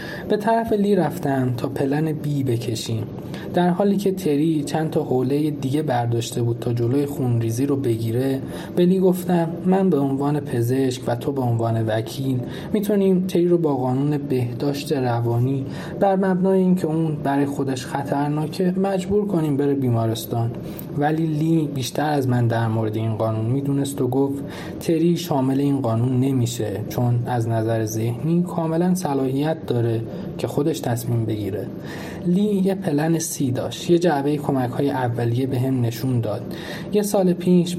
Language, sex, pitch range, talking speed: Persian, male, 125-165 Hz, 155 wpm